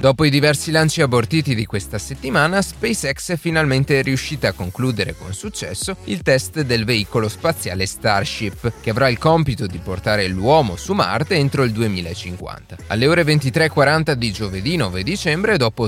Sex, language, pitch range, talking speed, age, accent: male, Italian, 100-150 Hz, 160 wpm, 30-49, native